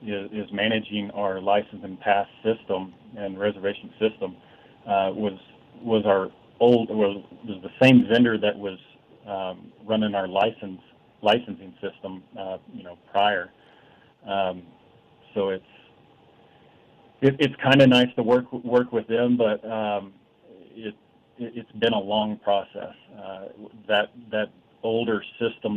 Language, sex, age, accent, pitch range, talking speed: English, male, 40-59, American, 100-110 Hz, 135 wpm